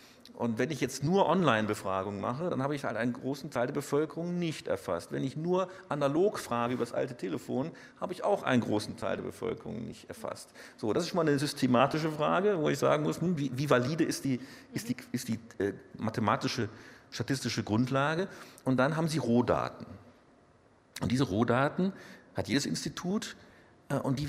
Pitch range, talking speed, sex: 120-160 Hz, 190 wpm, male